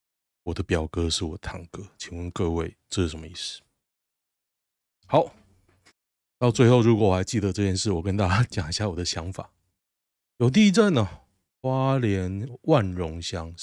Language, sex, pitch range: Chinese, male, 90-115 Hz